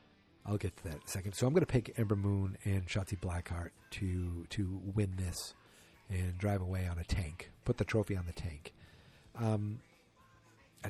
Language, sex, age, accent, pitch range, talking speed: English, male, 40-59, American, 95-115 Hz, 195 wpm